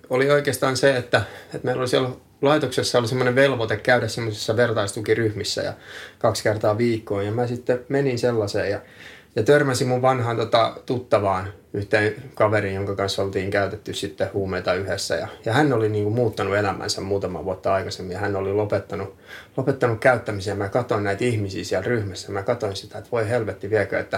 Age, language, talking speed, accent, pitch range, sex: 20-39, Finnish, 170 wpm, native, 100-130 Hz, male